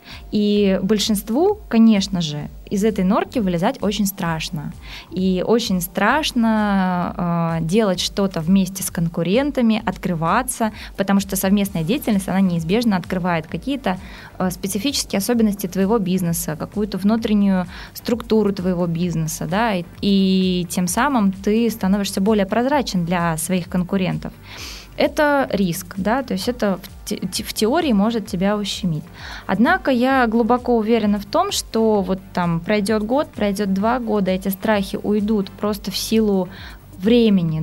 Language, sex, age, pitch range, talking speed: Russian, female, 20-39, 185-225 Hz, 130 wpm